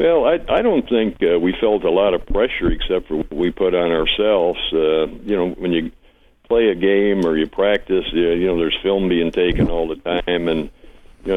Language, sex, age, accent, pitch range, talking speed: English, male, 60-79, American, 85-95 Hz, 220 wpm